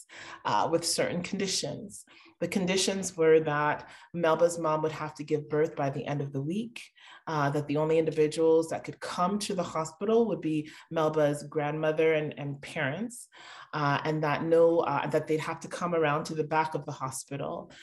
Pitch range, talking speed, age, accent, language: 150-170 Hz, 190 wpm, 30-49, American, English